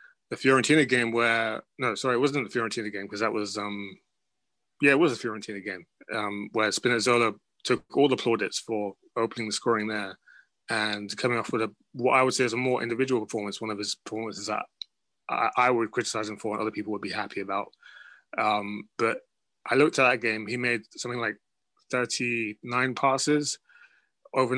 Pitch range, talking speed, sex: 110-130 Hz, 200 wpm, male